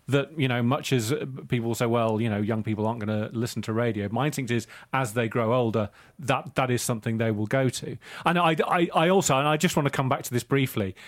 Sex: male